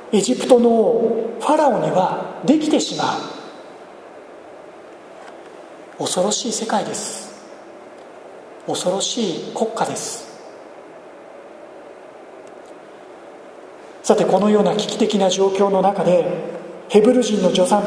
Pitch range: 185-230 Hz